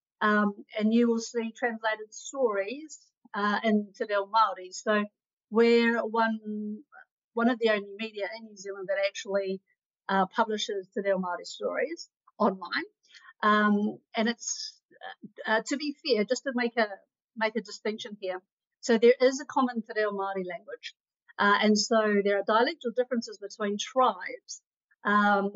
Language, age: English, 50-69